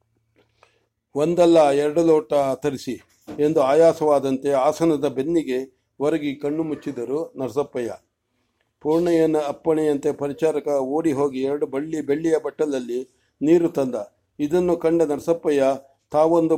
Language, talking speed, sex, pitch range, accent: English, 130 wpm, male, 140-175 Hz, Indian